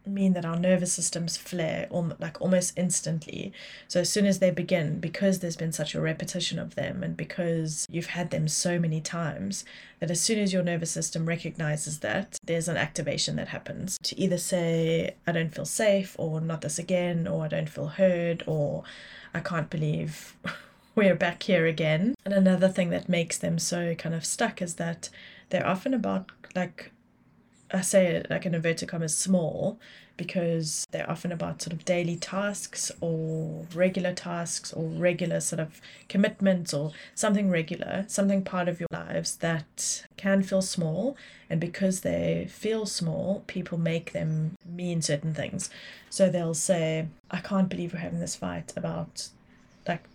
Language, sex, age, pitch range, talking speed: English, female, 20-39, 160-185 Hz, 170 wpm